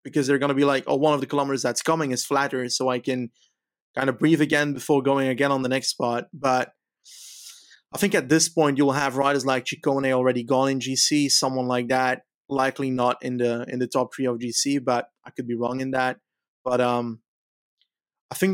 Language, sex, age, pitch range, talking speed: English, male, 20-39, 125-140 Hz, 220 wpm